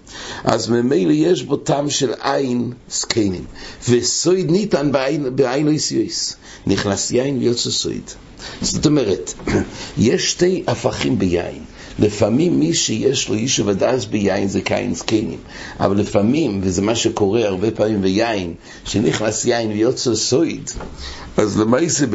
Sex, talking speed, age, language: male, 105 wpm, 60-79, English